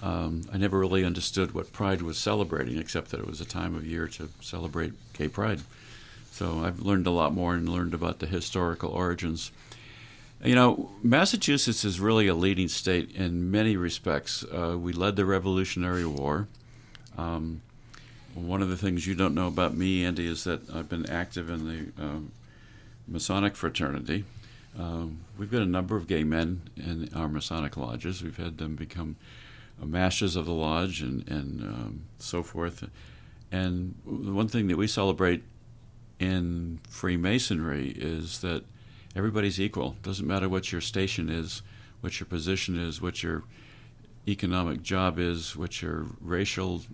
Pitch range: 85-105 Hz